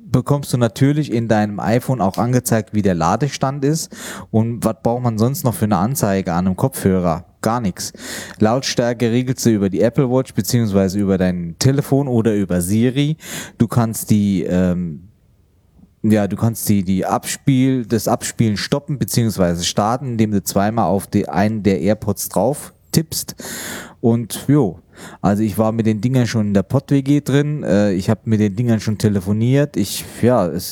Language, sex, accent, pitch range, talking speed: German, male, German, 100-125 Hz, 175 wpm